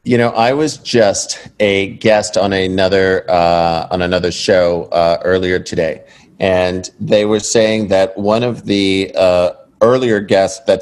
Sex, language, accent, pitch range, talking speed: male, English, American, 95-120 Hz, 155 wpm